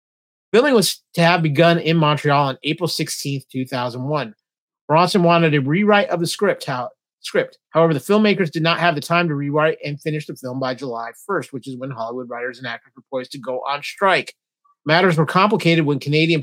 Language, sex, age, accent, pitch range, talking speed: English, male, 30-49, American, 140-170 Hz, 200 wpm